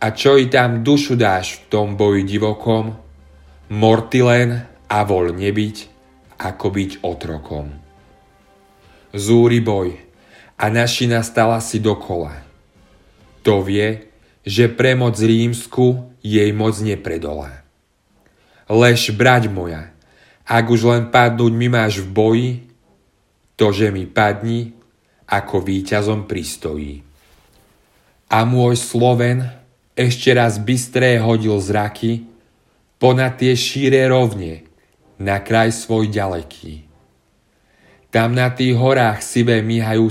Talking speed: 110 wpm